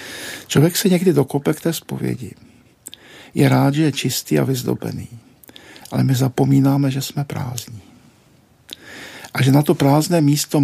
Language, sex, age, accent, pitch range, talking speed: Czech, male, 60-79, native, 125-145 Hz, 145 wpm